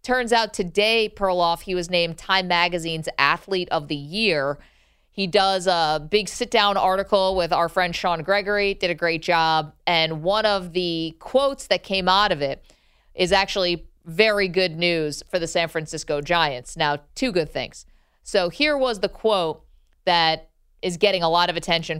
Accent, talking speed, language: American, 175 wpm, English